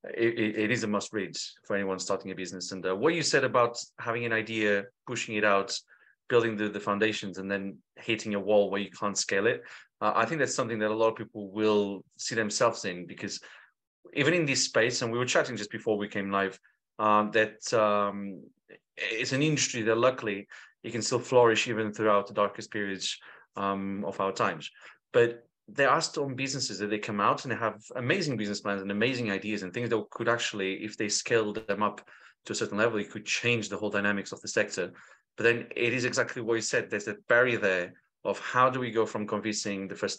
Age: 30-49